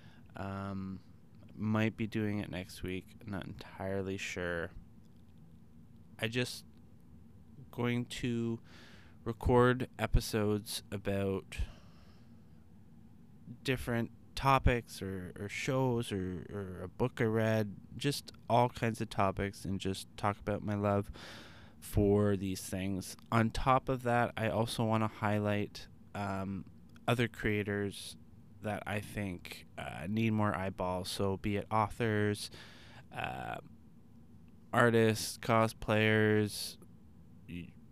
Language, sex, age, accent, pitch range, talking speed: English, male, 20-39, American, 95-115 Hz, 110 wpm